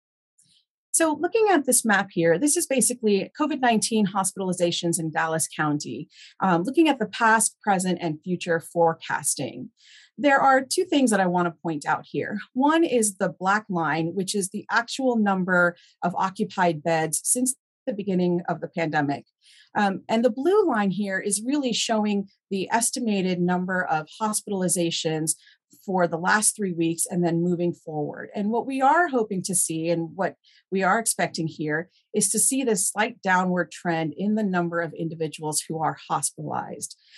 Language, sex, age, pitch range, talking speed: English, female, 40-59, 170-225 Hz, 165 wpm